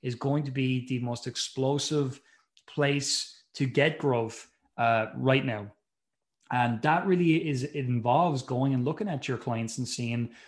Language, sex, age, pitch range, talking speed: English, male, 20-39, 120-155 Hz, 155 wpm